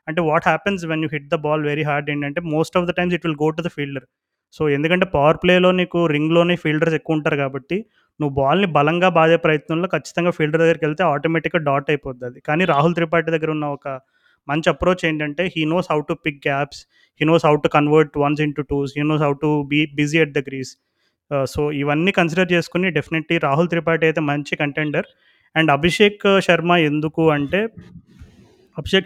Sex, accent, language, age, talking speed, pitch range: male, native, Telugu, 30-49, 200 wpm, 150-175 Hz